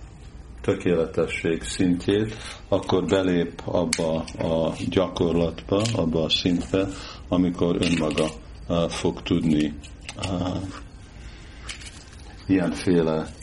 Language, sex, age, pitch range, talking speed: Hungarian, male, 50-69, 80-95 Hz, 75 wpm